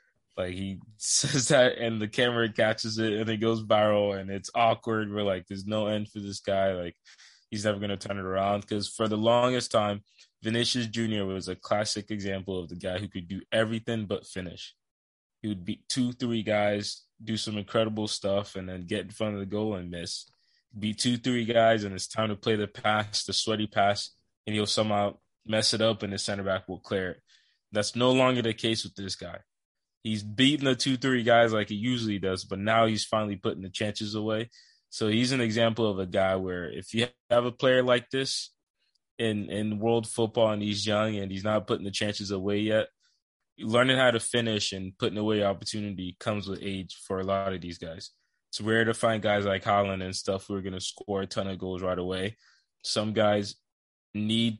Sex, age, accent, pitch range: male, 20-39, American, 100-115 Hz